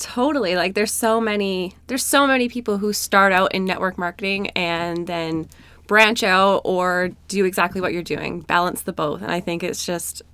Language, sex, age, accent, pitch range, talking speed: English, female, 20-39, American, 175-220 Hz, 190 wpm